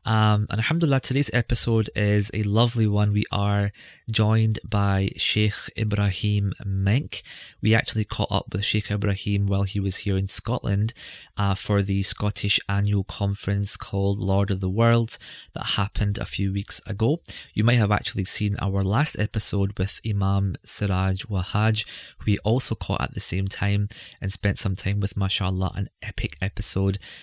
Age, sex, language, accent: 20-39, male, English, British